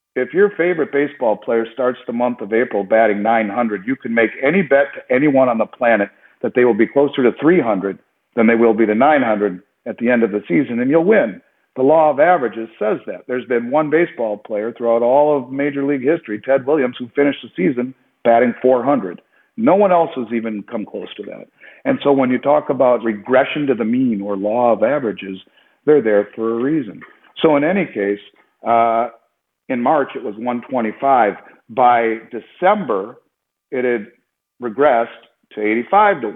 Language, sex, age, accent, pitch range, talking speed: English, male, 50-69, American, 115-140 Hz, 190 wpm